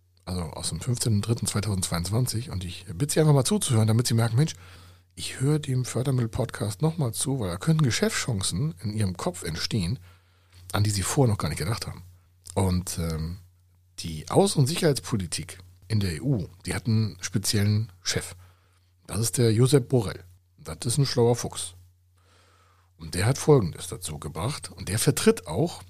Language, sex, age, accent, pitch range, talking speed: German, male, 60-79, German, 90-130 Hz, 165 wpm